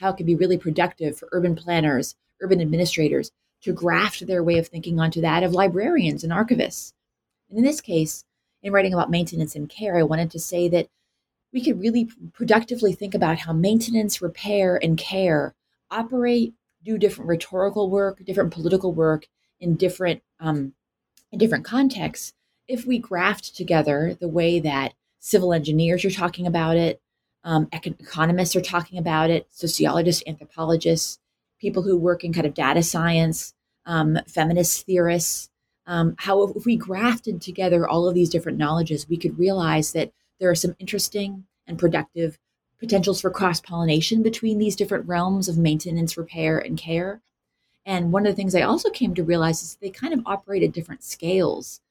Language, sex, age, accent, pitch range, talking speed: English, female, 30-49, American, 165-195 Hz, 165 wpm